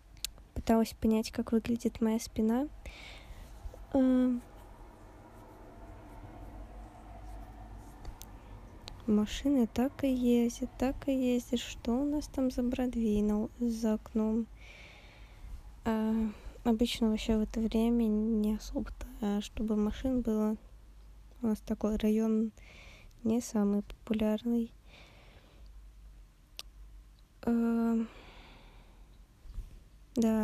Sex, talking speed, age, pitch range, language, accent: female, 85 wpm, 20-39, 210-235 Hz, Russian, native